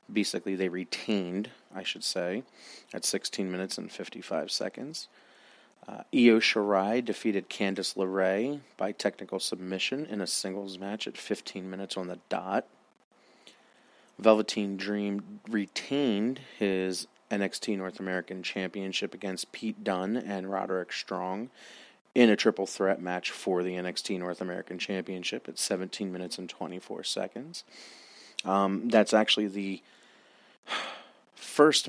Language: English